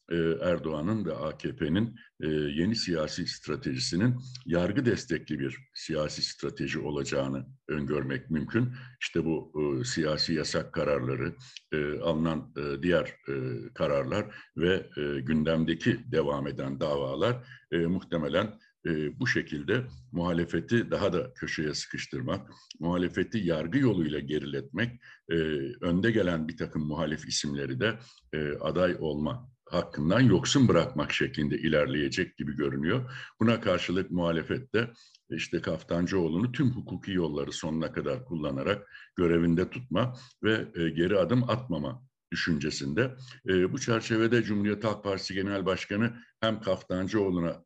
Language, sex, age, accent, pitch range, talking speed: Turkish, male, 60-79, native, 80-115 Hz, 105 wpm